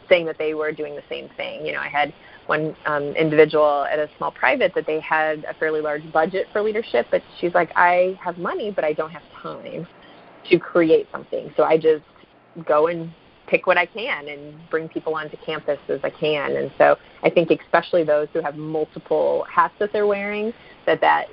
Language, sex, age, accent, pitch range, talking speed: English, female, 30-49, American, 150-170 Hz, 210 wpm